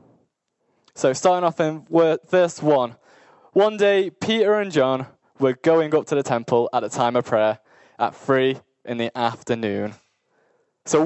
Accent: British